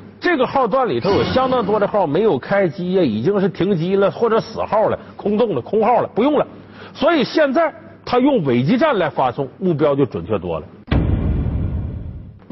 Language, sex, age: Chinese, male, 50-69